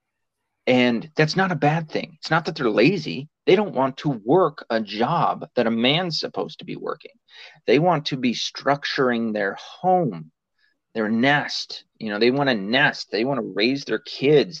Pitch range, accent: 105-150 Hz, American